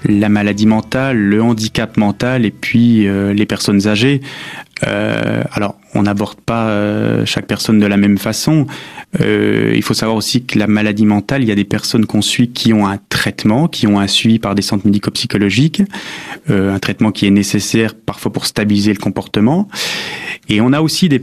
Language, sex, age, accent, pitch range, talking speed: French, male, 30-49, French, 105-130 Hz, 195 wpm